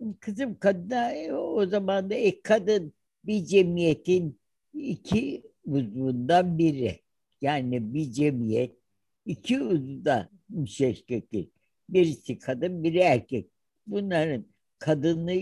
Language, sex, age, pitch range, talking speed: Turkish, female, 60-79, 120-160 Hz, 95 wpm